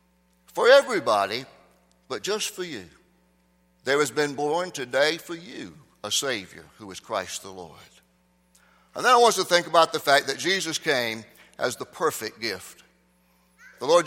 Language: English